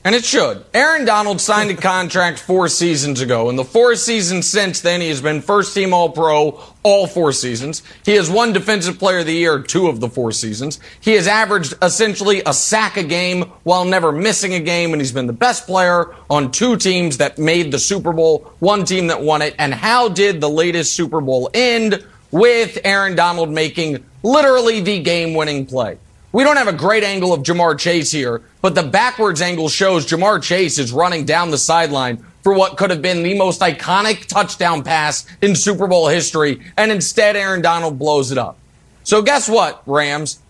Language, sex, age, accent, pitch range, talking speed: English, male, 30-49, American, 160-210 Hz, 200 wpm